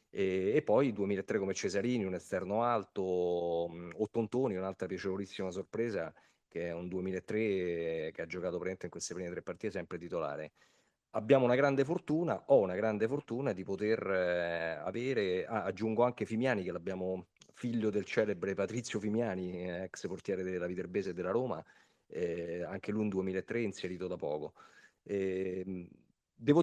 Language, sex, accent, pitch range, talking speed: Italian, male, native, 90-110 Hz, 135 wpm